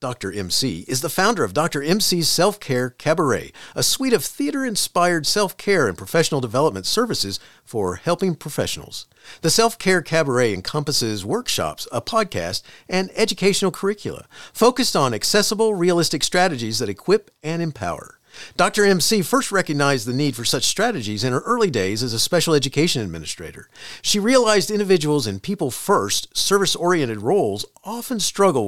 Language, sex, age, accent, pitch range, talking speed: English, male, 50-69, American, 130-195 Hz, 140 wpm